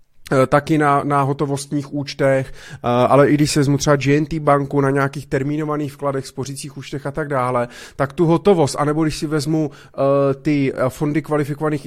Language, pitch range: Czech, 140-160 Hz